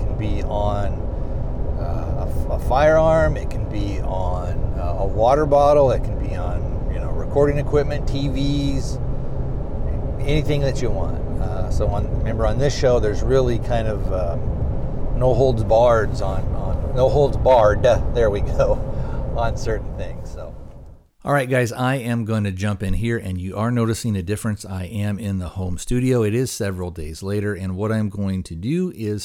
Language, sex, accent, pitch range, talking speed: English, male, American, 90-115 Hz, 180 wpm